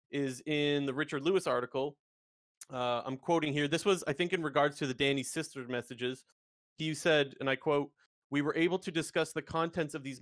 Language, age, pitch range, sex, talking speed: English, 30-49, 130-160 Hz, male, 205 wpm